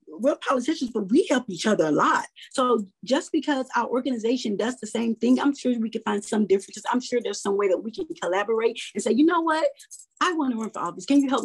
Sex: female